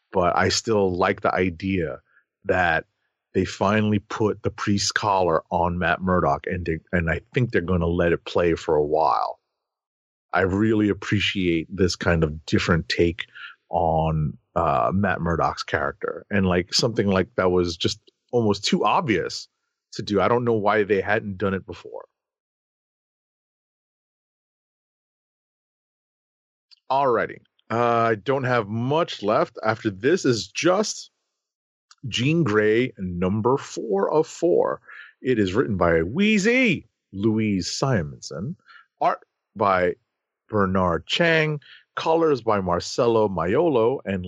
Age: 30-49